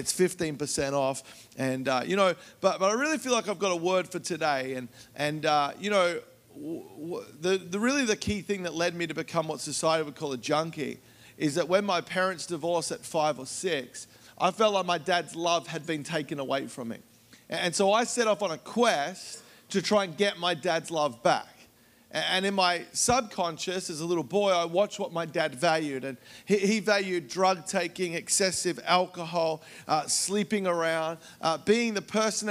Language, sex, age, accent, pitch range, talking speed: English, male, 40-59, Australian, 160-200 Hz, 195 wpm